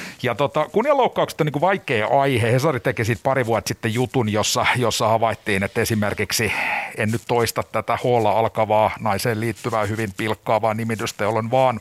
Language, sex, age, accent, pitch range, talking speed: Finnish, male, 50-69, native, 105-115 Hz, 170 wpm